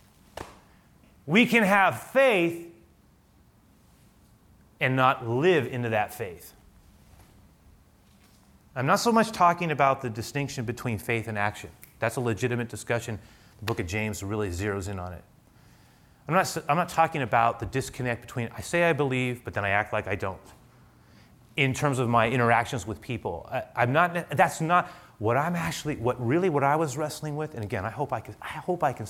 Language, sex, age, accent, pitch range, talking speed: English, male, 30-49, American, 110-135 Hz, 180 wpm